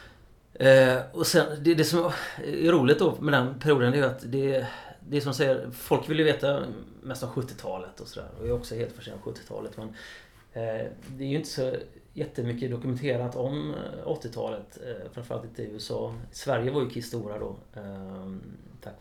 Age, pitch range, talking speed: 30-49, 105-130 Hz, 185 wpm